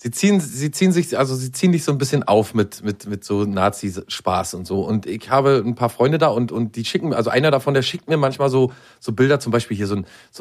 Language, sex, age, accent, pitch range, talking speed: German, male, 40-59, German, 105-130 Hz, 275 wpm